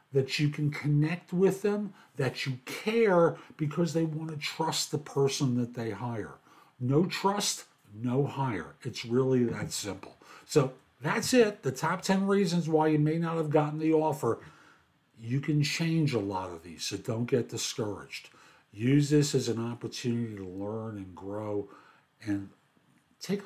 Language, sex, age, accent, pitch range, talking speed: English, male, 50-69, American, 105-155 Hz, 165 wpm